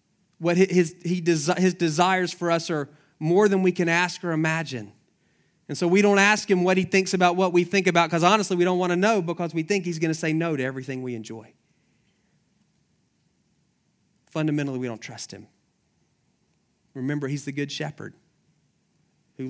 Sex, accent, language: male, American, English